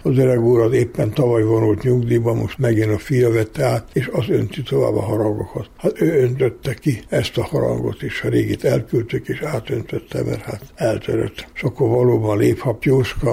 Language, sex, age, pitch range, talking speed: Hungarian, male, 60-79, 105-125 Hz, 175 wpm